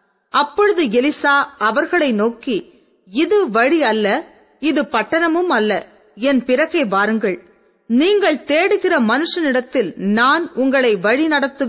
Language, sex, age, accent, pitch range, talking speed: Tamil, female, 30-49, native, 220-310 Hz, 100 wpm